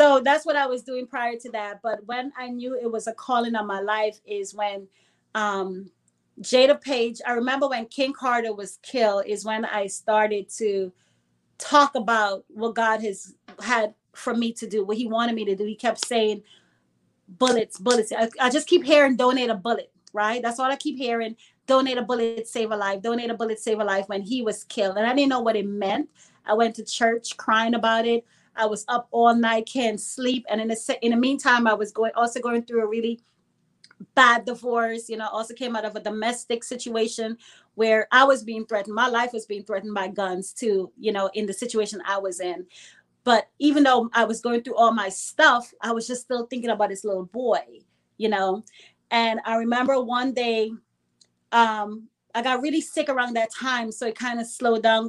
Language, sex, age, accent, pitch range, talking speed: English, female, 30-49, American, 210-245 Hz, 210 wpm